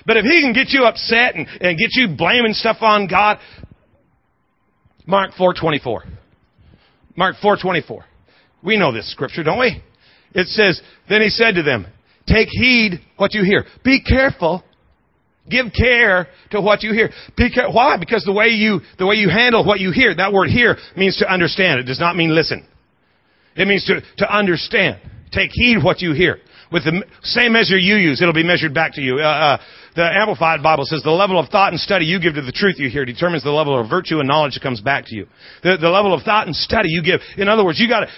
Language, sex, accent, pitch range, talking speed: English, male, American, 170-220 Hz, 220 wpm